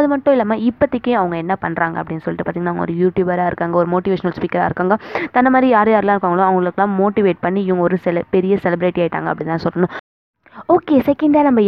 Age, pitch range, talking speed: 20-39, 180-225 Hz, 185 wpm